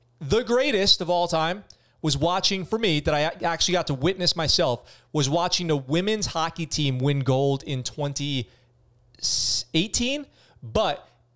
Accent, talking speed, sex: American, 145 wpm, male